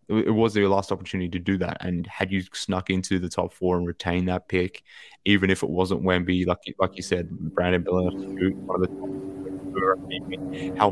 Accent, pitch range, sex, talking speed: Australian, 90-100 Hz, male, 175 wpm